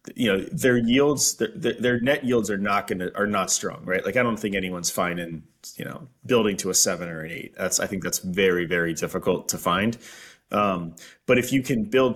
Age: 30-49